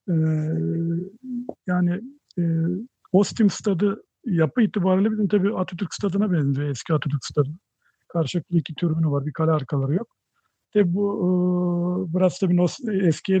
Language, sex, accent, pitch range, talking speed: Turkish, male, native, 160-190 Hz, 135 wpm